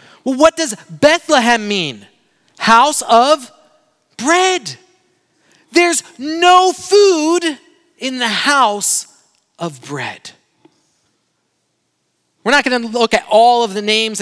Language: English